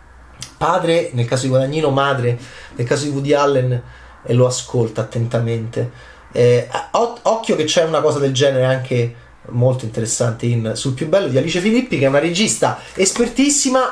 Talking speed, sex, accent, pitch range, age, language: 165 wpm, male, native, 125-155 Hz, 30-49, Italian